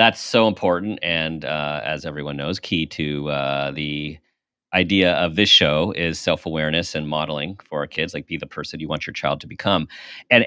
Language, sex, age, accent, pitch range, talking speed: English, male, 40-59, American, 85-125 Hz, 195 wpm